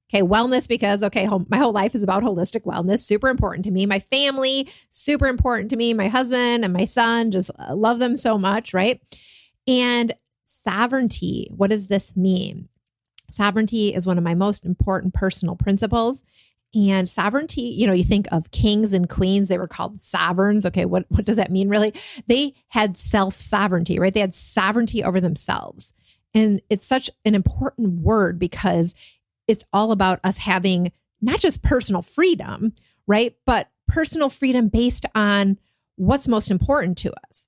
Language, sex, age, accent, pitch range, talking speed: English, female, 30-49, American, 195-240 Hz, 165 wpm